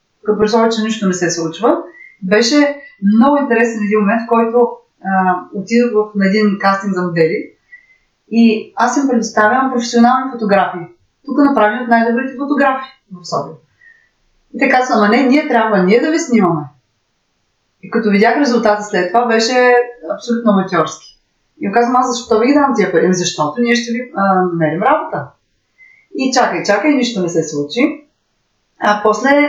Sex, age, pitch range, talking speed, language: female, 30-49, 185-260 Hz, 155 wpm, Bulgarian